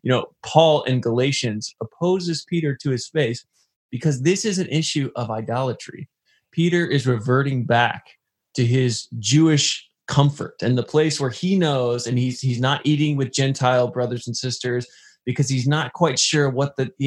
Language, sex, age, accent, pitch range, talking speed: English, male, 20-39, American, 125-150 Hz, 170 wpm